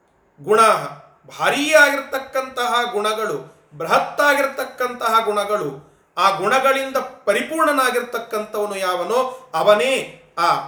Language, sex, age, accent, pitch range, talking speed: Kannada, male, 30-49, native, 200-255 Hz, 75 wpm